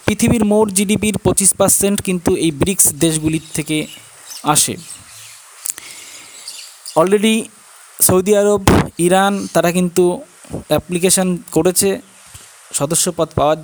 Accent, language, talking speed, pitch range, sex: native, Bengali, 95 wpm, 155-195 Hz, male